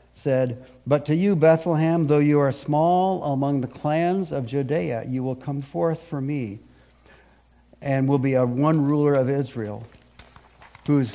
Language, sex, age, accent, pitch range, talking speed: English, male, 60-79, American, 120-145 Hz, 155 wpm